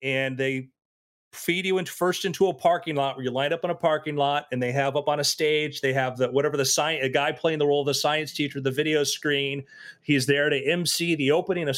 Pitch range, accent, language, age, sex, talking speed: 135-160 Hz, American, English, 30-49, male, 255 wpm